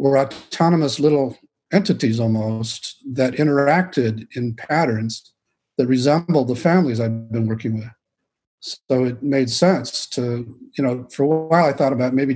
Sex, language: male, English